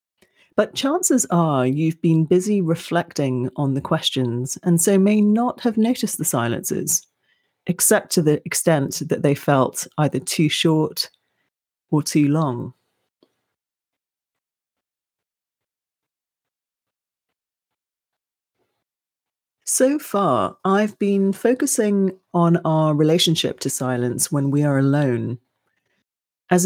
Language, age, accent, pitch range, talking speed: English, 40-59, British, 145-190 Hz, 105 wpm